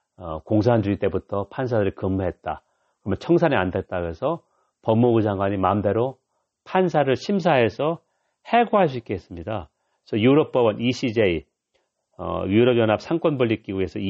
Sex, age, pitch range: male, 40-59, 100-150 Hz